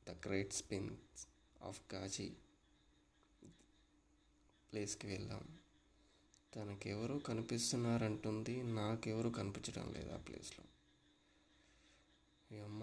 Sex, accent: male, Indian